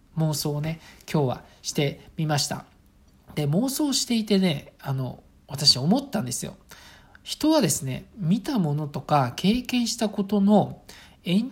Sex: male